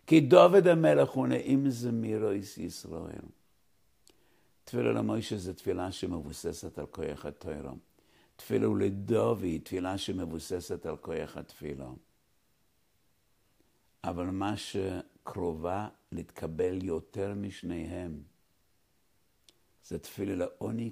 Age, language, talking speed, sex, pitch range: 60-79, English, 95 wpm, male, 85-125 Hz